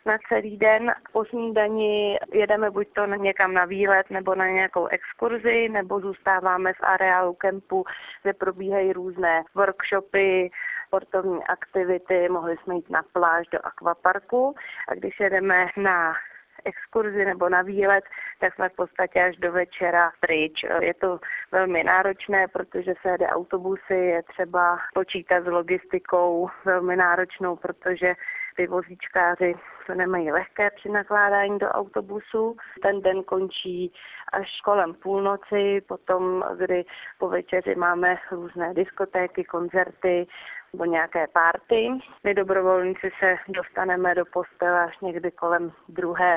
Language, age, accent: Czech, 20-39, native